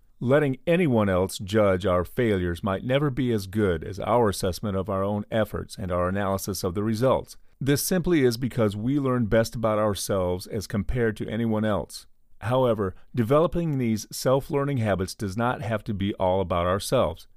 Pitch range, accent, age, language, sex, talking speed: 95-125 Hz, American, 40-59, English, male, 175 wpm